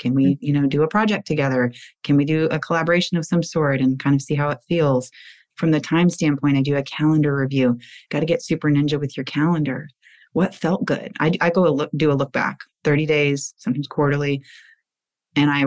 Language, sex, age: English, female, 30-49